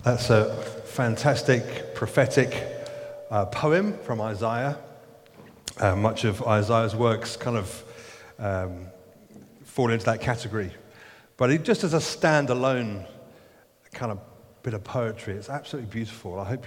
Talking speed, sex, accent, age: 130 wpm, male, British, 30-49